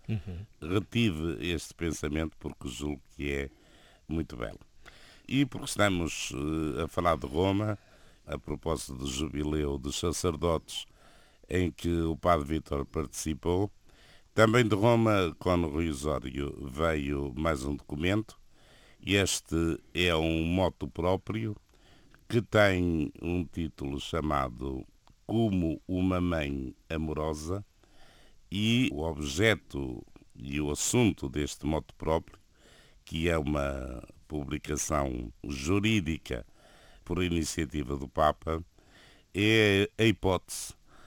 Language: Portuguese